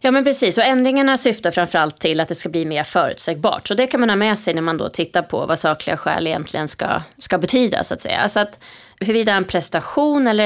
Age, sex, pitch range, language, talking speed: 20-39, female, 165-215 Hz, Swedish, 240 wpm